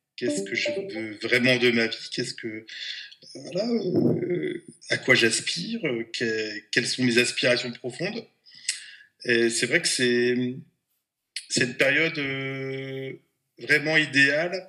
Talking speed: 135 wpm